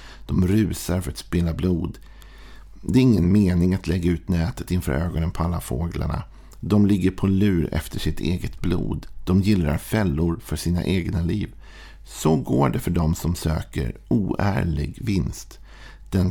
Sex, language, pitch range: male, Swedish, 80-95 Hz